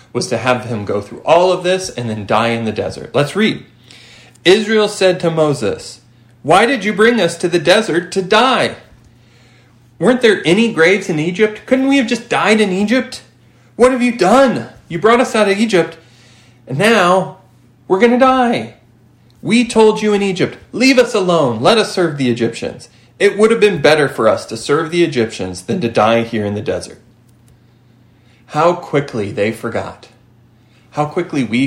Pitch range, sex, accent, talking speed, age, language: 120-185 Hz, male, American, 185 wpm, 30-49, English